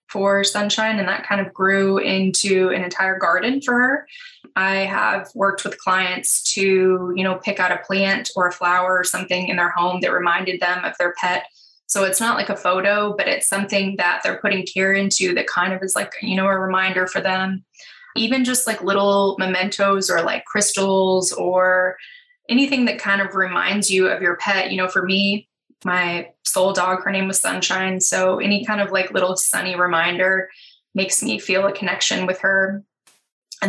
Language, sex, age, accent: English, female, 10-29, American